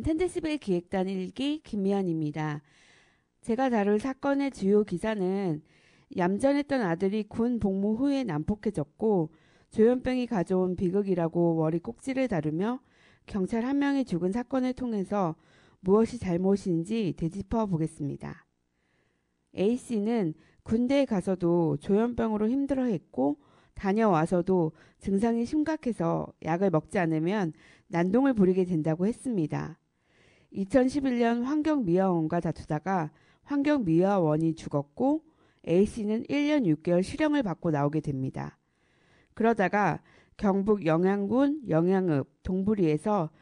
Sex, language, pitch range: female, Korean, 165-240 Hz